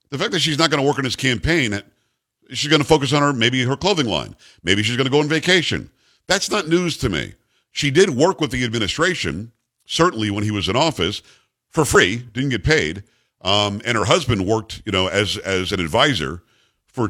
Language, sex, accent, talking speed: English, male, American, 220 wpm